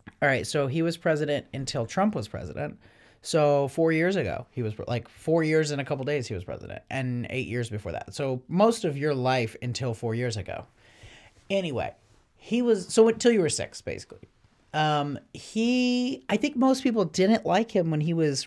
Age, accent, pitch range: 30-49, American, 125-175 Hz